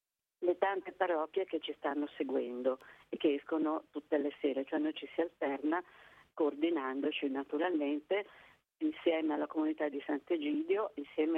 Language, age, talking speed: Italian, 40-59, 135 wpm